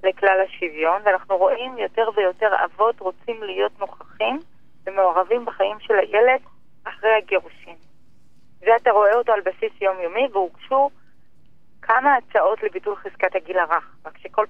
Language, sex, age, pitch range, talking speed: Hebrew, female, 30-49, 185-245 Hz, 130 wpm